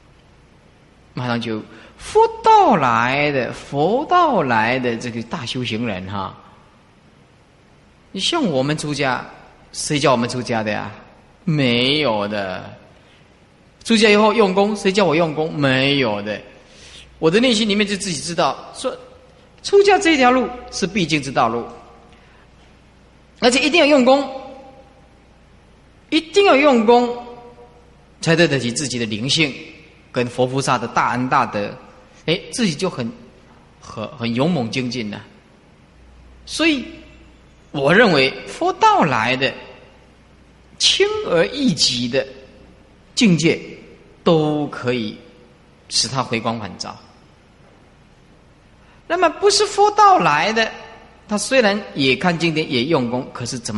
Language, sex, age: Chinese, male, 30-49